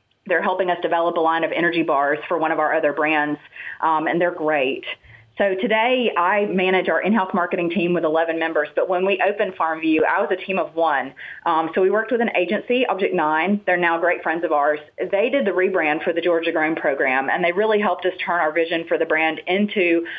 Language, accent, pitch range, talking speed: English, American, 160-190 Hz, 230 wpm